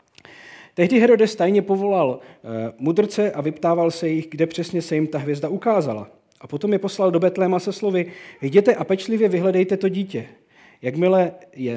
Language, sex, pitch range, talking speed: Czech, male, 135-185 Hz, 165 wpm